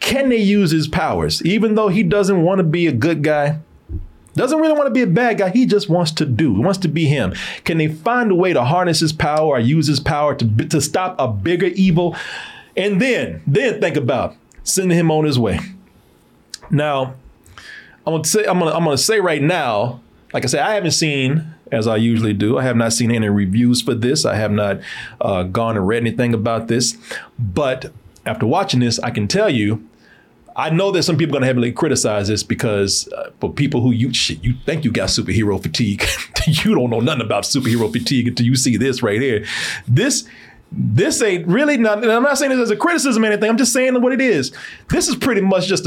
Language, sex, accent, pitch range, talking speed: English, male, American, 120-195 Hz, 225 wpm